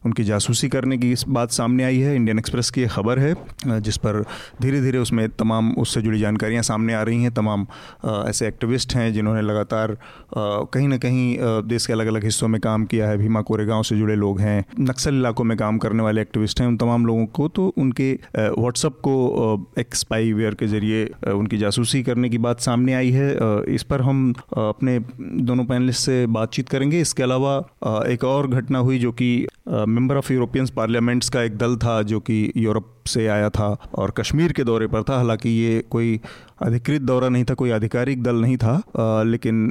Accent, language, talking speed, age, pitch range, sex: native, Hindi, 195 wpm, 30-49, 110-125 Hz, male